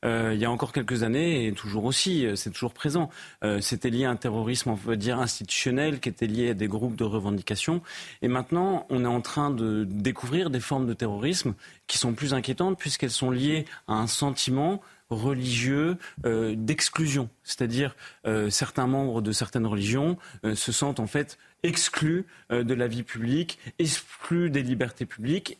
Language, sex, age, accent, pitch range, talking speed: French, male, 30-49, French, 120-155 Hz, 185 wpm